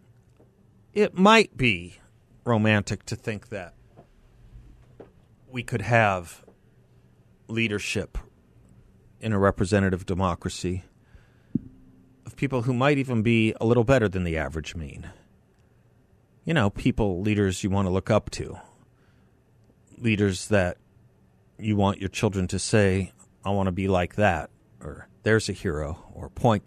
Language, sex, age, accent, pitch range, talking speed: English, male, 40-59, American, 95-115 Hz, 130 wpm